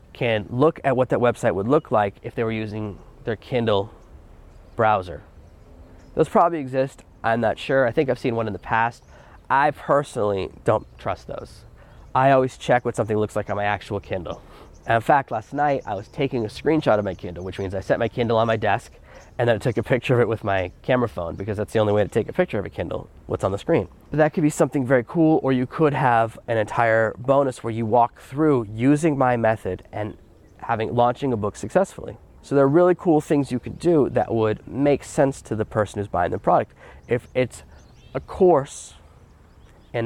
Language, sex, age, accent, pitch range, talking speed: English, male, 20-39, American, 105-135 Hz, 220 wpm